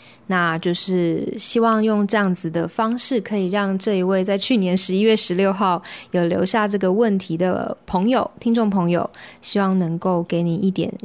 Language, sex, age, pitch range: Chinese, female, 20-39, 175-220 Hz